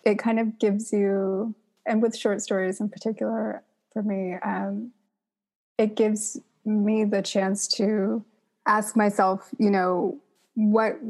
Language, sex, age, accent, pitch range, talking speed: English, female, 20-39, American, 195-220 Hz, 135 wpm